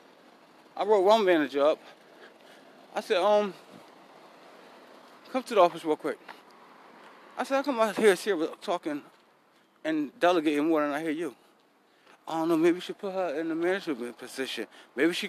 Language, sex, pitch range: English, male, 160-225 Hz